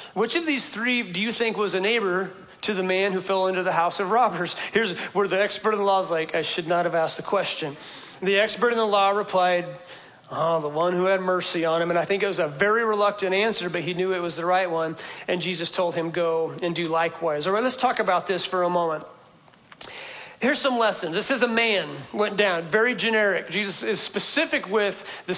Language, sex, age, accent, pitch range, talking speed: English, male, 40-59, American, 180-230 Hz, 235 wpm